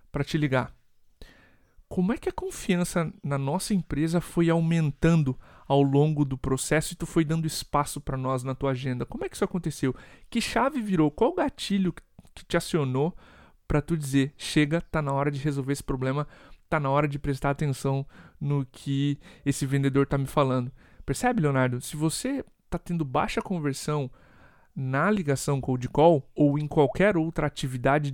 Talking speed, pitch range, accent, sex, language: 175 wpm, 135-170 Hz, Brazilian, male, Portuguese